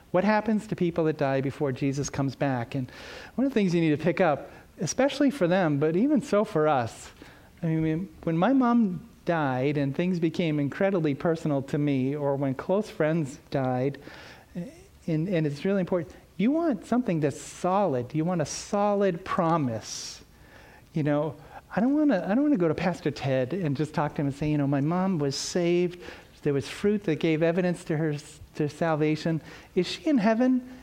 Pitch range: 150-190 Hz